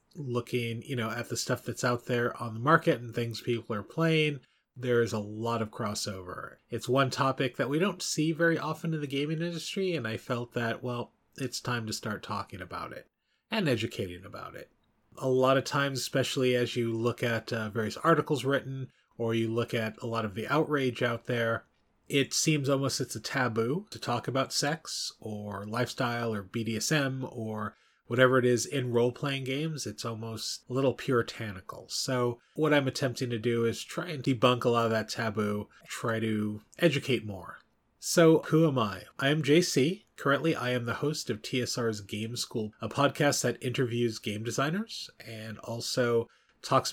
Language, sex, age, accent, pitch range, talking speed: English, male, 30-49, American, 115-135 Hz, 185 wpm